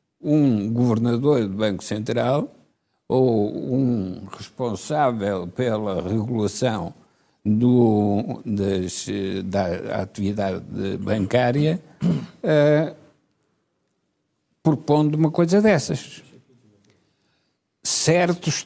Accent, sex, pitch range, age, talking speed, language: Portuguese, male, 115-160 Hz, 60-79, 70 wpm, Portuguese